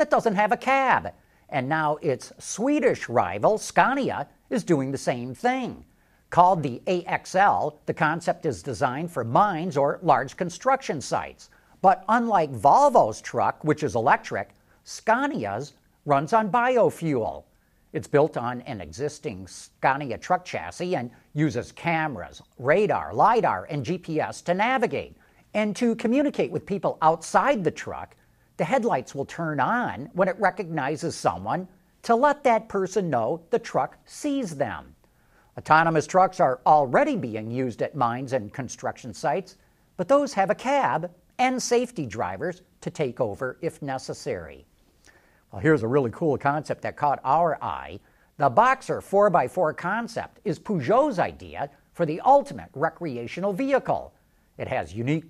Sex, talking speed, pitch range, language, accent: male, 145 wpm, 135-210 Hz, English, American